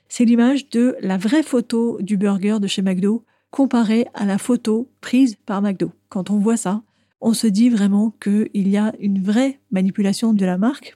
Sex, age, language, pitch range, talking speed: female, 40-59, French, 195-235 Hz, 190 wpm